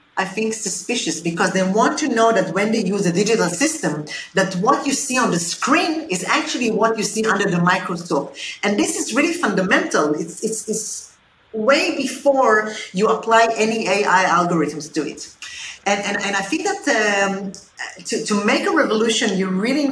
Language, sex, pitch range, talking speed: English, female, 185-245 Hz, 185 wpm